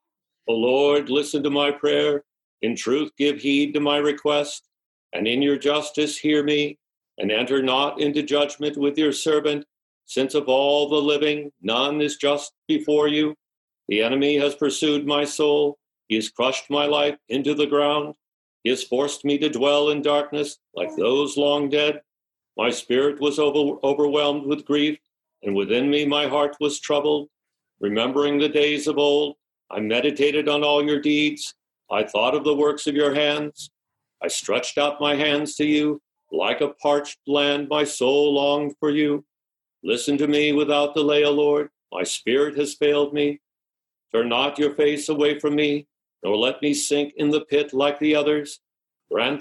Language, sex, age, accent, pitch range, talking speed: English, male, 60-79, American, 145-150 Hz, 170 wpm